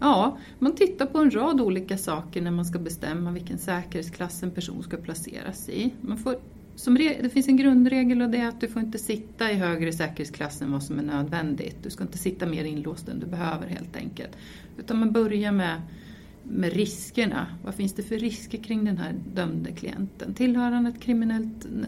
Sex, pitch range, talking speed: female, 180-230 Hz, 200 wpm